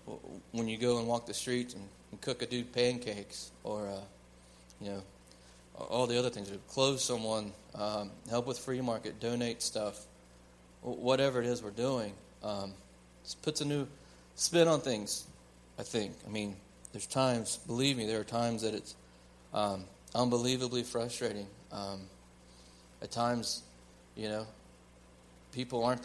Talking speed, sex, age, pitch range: 150 wpm, male, 30-49, 95-120 Hz